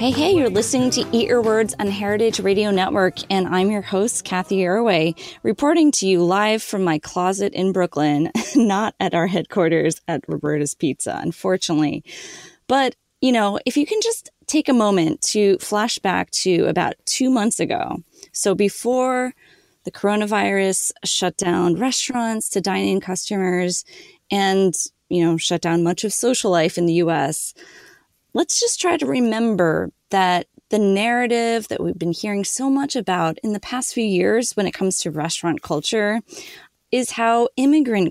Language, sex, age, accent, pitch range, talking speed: English, female, 20-39, American, 175-240 Hz, 165 wpm